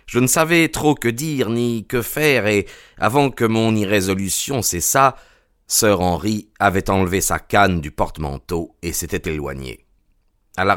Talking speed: 155 wpm